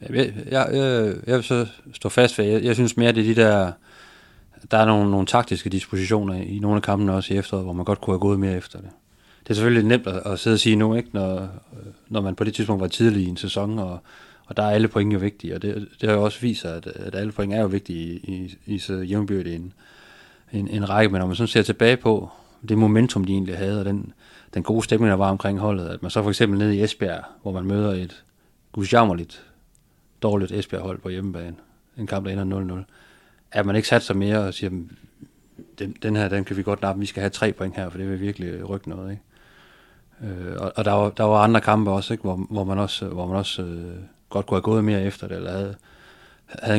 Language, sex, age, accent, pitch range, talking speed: Danish, male, 30-49, native, 95-110 Hz, 250 wpm